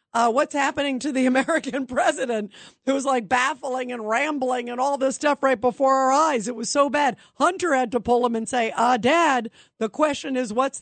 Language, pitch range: English, 235-285 Hz